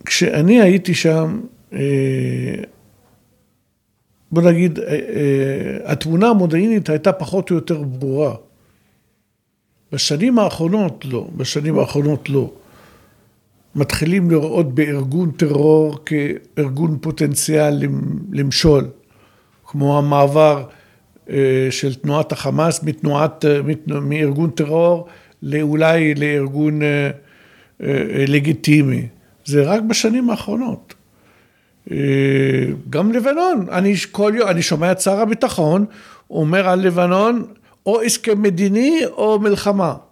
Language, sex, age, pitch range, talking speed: Hebrew, male, 60-79, 145-210 Hz, 85 wpm